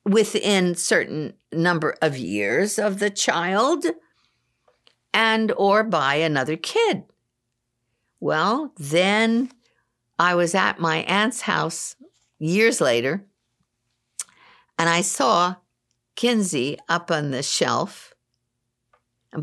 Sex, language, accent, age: female, English, American, 60-79